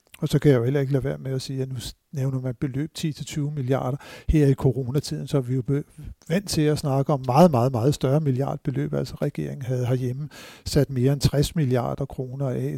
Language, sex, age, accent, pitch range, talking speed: Danish, male, 60-79, native, 130-150 Hz, 220 wpm